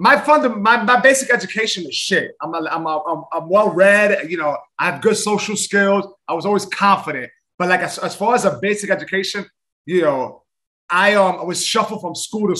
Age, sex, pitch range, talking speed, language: 30-49, male, 180-225 Hz, 205 wpm, English